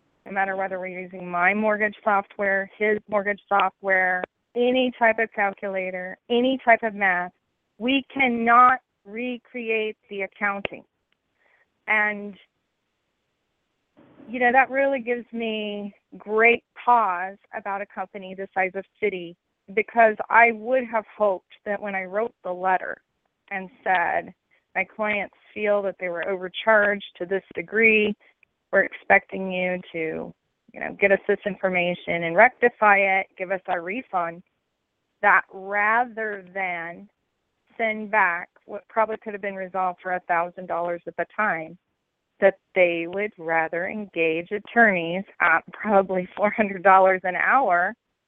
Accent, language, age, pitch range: American, English, 30-49, 185-220 Hz